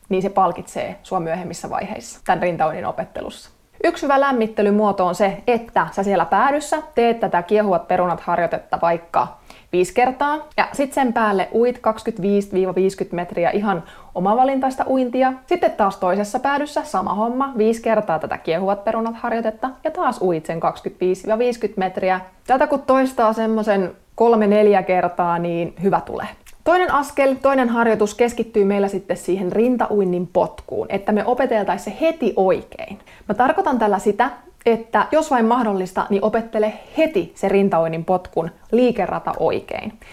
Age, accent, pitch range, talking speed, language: 20-39, native, 185-245 Hz, 140 wpm, Finnish